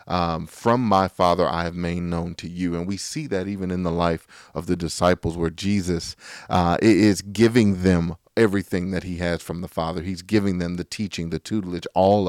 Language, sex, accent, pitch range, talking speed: English, male, American, 85-100 Hz, 205 wpm